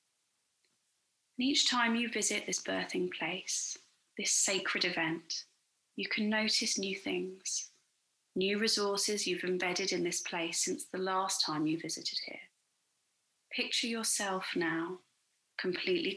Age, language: 30-49, English